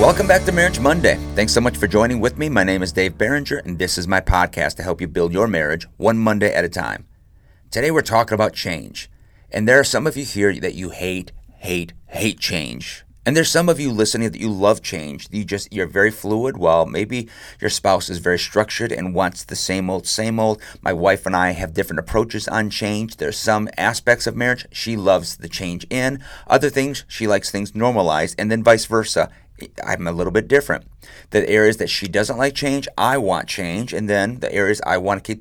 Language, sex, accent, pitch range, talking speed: English, male, American, 90-115 Hz, 225 wpm